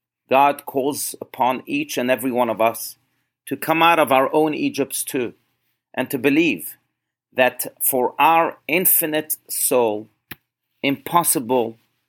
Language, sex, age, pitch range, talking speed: English, male, 40-59, 125-150 Hz, 130 wpm